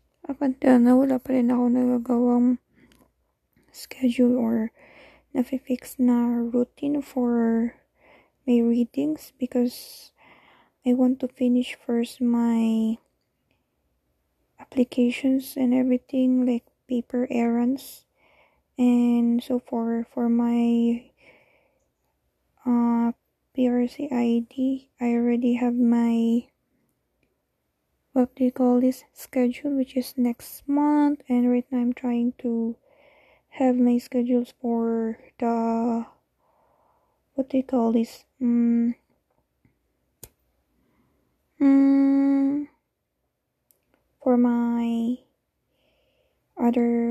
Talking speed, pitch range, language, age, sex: 90 wpm, 235-260 Hz, Filipino, 20-39, female